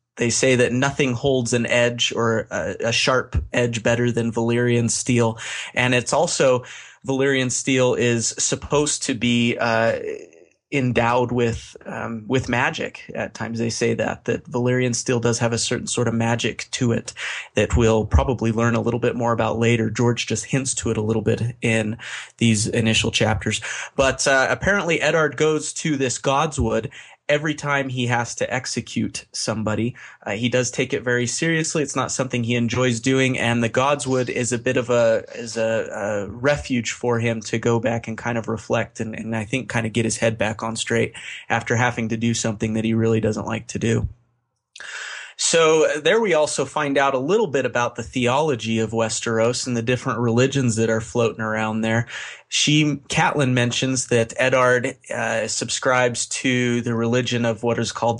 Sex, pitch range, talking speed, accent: male, 115-130 Hz, 185 wpm, American